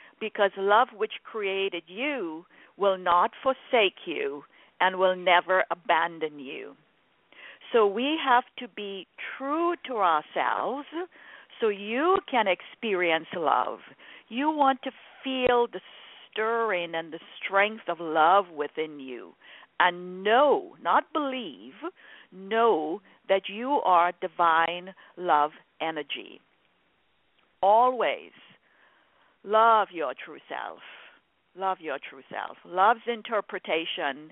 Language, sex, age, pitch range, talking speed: English, female, 50-69, 180-265 Hz, 110 wpm